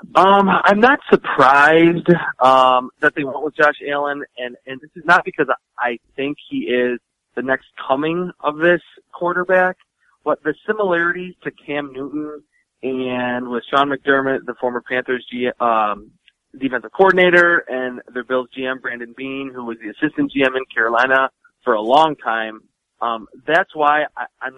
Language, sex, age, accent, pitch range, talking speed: English, male, 30-49, American, 125-155 Hz, 155 wpm